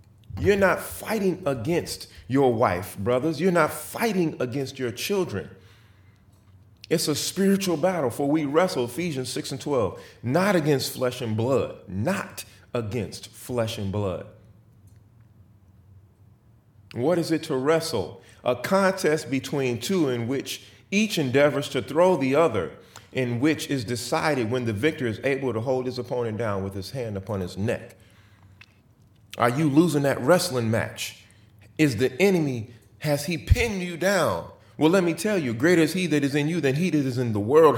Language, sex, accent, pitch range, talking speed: English, male, American, 110-160 Hz, 165 wpm